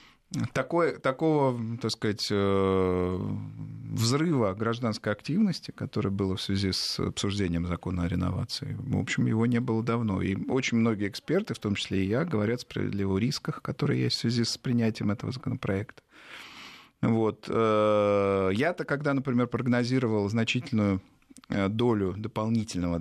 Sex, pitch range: male, 100-130 Hz